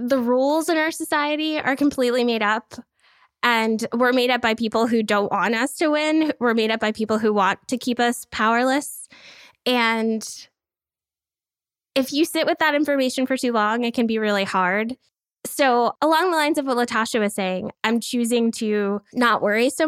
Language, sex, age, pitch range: English, female, 10-29, 225-280 Hz